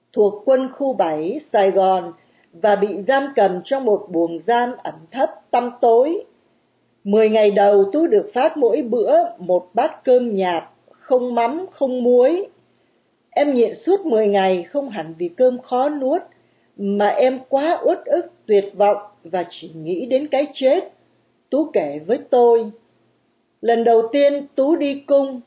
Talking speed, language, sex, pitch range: 160 wpm, Vietnamese, female, 195-275 Hz